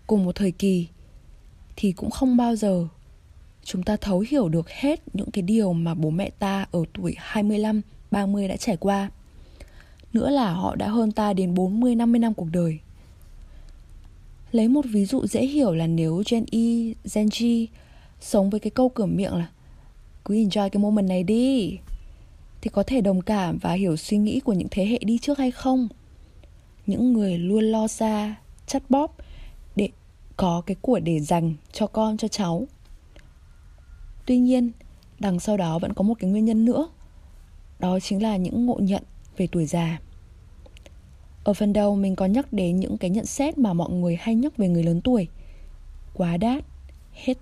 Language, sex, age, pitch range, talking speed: Vietnamese, female, 20-39, 170-230 Hz, 180 wpm